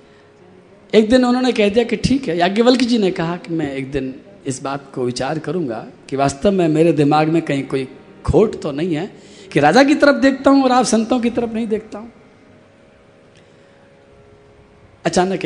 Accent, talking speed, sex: native, 185 wpm, male